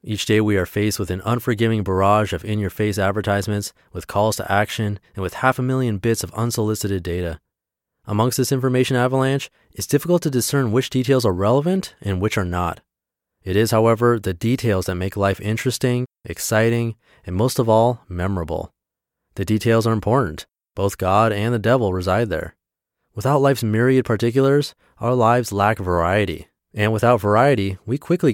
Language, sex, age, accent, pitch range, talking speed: English, male, 30-49, American, 95-120 Hz, 170 wpm